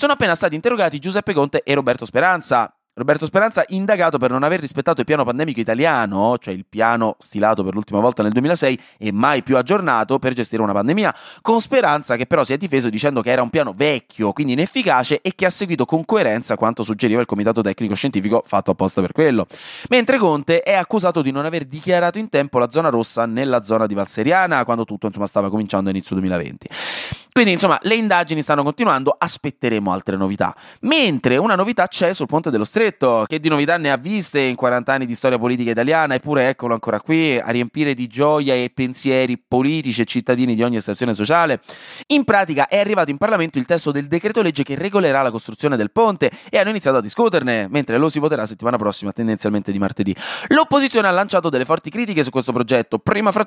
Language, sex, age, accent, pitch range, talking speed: Italian, male, 20-39, native, 115-170 Hz, 200 wpm